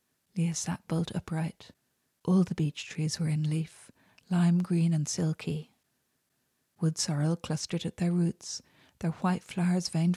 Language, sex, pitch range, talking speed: English, female, 155-175 Hz, 150 wpm